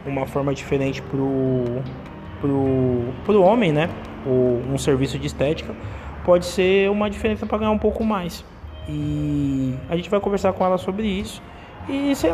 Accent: Brazilian